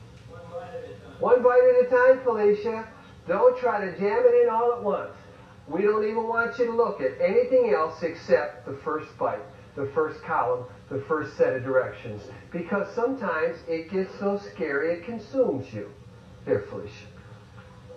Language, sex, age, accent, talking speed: English, male, 50-69, American, 160 wpm